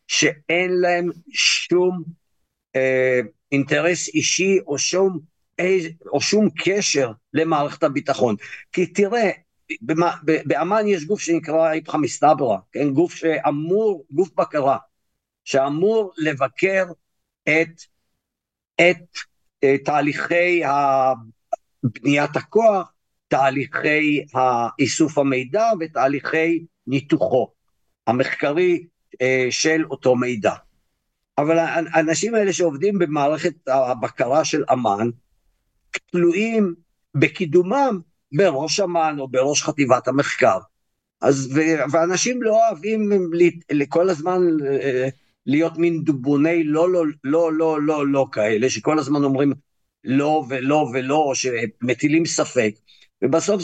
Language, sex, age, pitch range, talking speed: Hebrew, male, 50-69, 140-180 Hz, 95 wpm